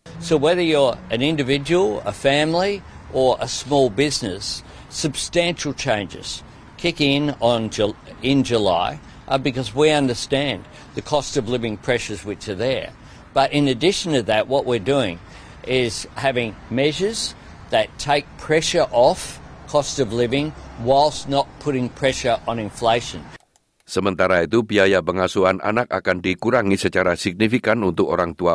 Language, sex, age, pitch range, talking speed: Indonesian, male, 60-79, 95-130 Hz, 135 wpm